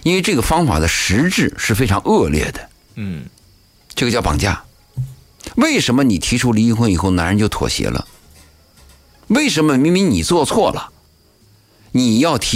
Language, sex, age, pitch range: Chinese, male, 50-69, 85-120 Hz